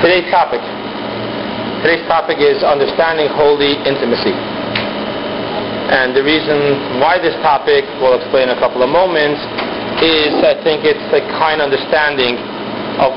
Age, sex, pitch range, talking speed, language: 40-59, male, 135-160 Hz, 130 wpm, English